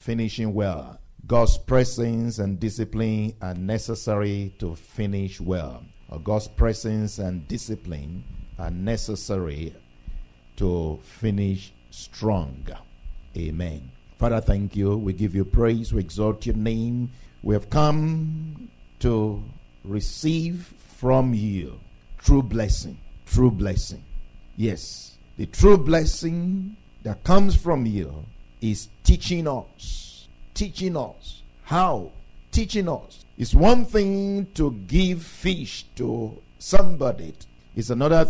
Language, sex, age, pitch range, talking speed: English, male, 50-69, 95-160 Hz, 110 wpm